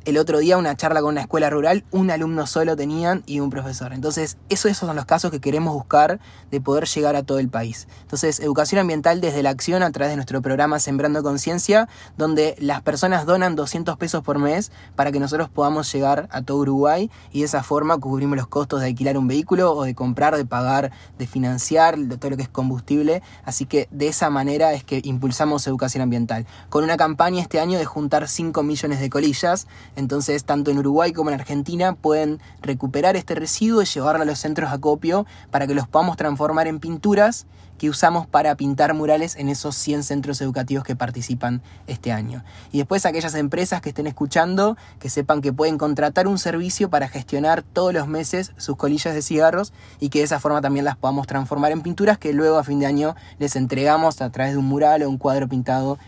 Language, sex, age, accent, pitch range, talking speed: Spanish, male, 20-39, Argentinian, 135-160 Hz, 210 wpm